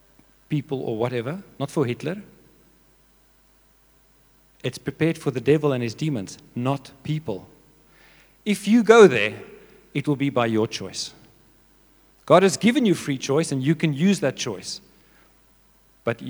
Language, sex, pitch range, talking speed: English, male, 120-160 Hz, 145 wpm